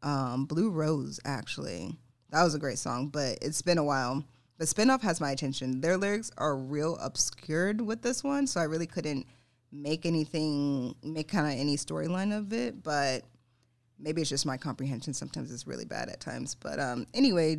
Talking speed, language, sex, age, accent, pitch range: 190 wpm, English, female, 20-39, American, 135-165 Hz